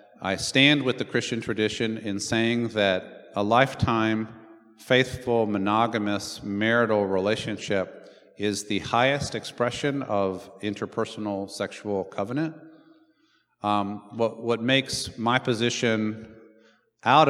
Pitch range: 100-120 Hz